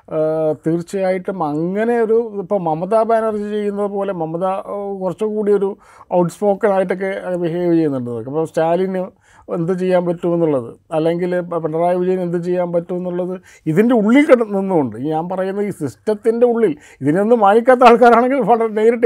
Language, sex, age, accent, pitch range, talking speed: Malayalam, male, 50-69, native, 170-215 Hz, 130 wpm